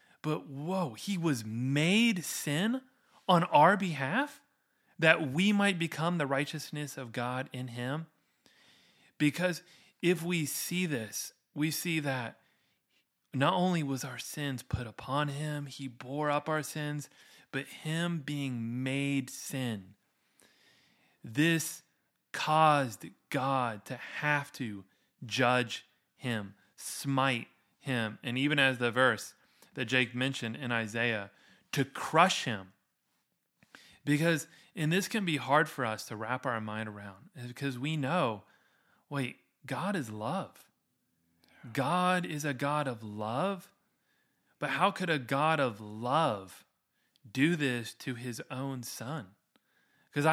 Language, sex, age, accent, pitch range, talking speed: English, male, 30-49, American, 125-160 Hz, 130 wpm